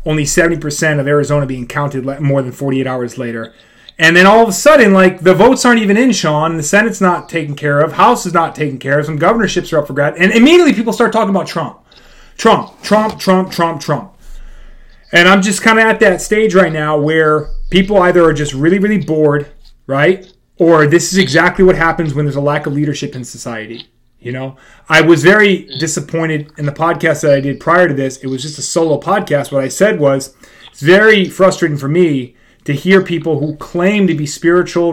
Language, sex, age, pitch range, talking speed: English, male, 30-49, 145-185 Hz, 215 wpm